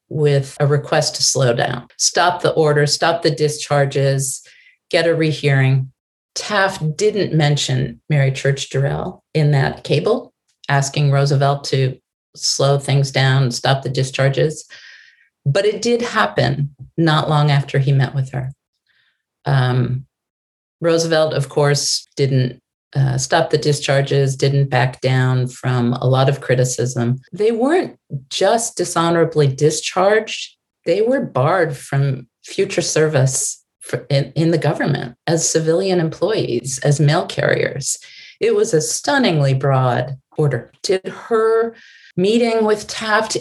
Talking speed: 130 wpm